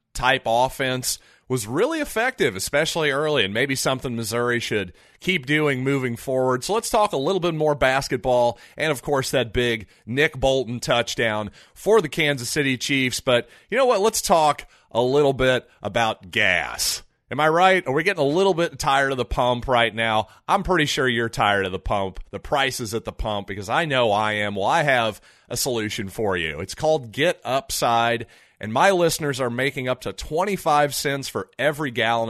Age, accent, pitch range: 30-49, American, 115-150 Hz